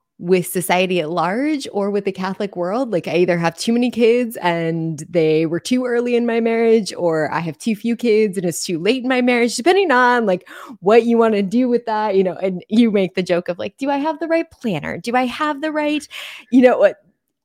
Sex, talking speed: female, 240 wpm